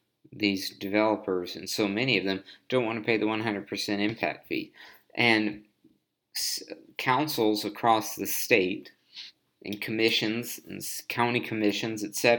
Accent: American